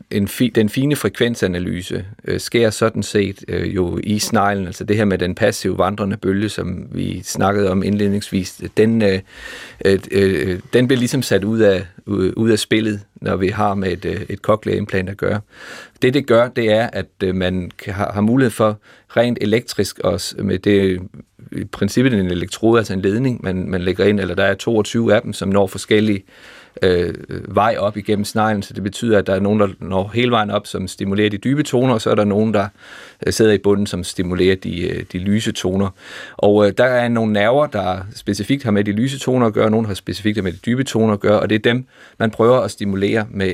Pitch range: 95-110 Hz